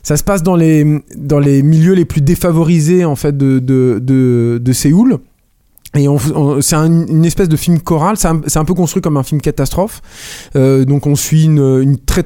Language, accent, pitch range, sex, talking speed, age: French, French, 135-175 Hz, male, 215 wpm, 20-39